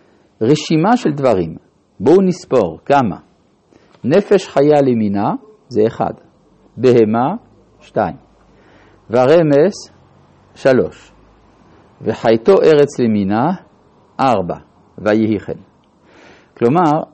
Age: 50-69